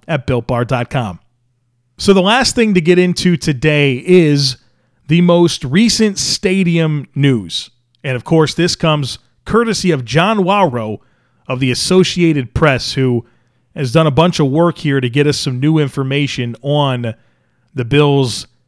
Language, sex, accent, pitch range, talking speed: English, male, American, 125-180 Hz, 150 wpm